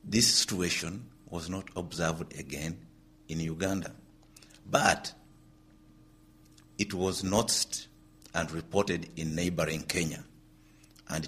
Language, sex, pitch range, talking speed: English, male, 75-100 Hz, 95 wpm